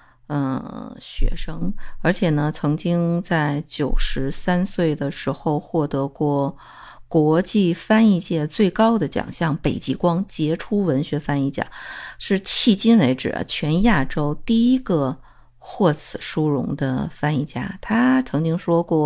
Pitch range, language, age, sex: 145-180 Hz, Chinese, 50-69, female